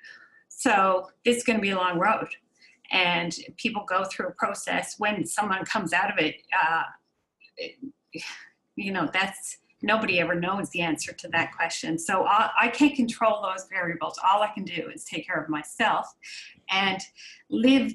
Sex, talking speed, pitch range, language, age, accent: female, 165 wpm, 175-235 Hz, English, 40-59, American